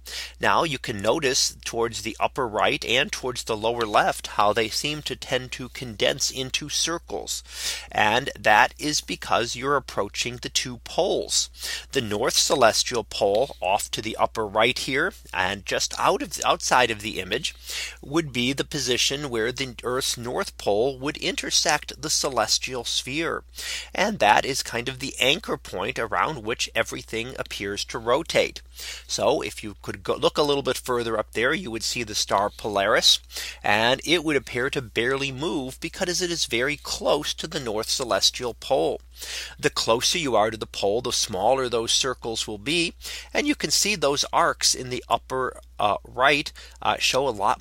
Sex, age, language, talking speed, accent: male, 30-49, English, 180 wpm, American